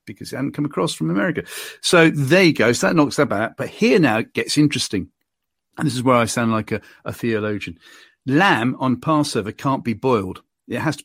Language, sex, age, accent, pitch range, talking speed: English, male, 50-69, British, 115-145 Hz, 225 wpm